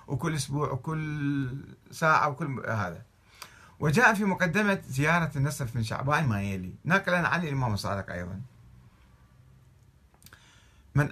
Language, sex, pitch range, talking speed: Arabic, male, 110-150 Hz, 120 wpm